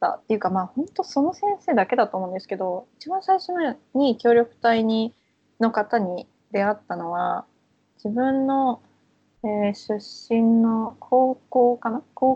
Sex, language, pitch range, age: female, Japanese, 200-260 Hz, 20-39